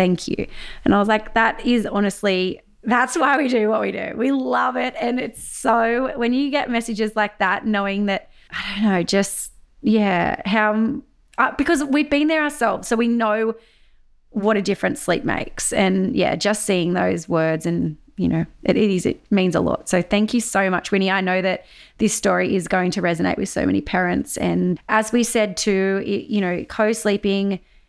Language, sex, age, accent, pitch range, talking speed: English, female, 20-39, Australian, 185-225 Hz, 200 wpm